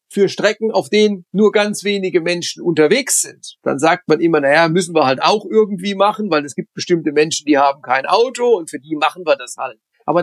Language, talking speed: Polish, 225 wpm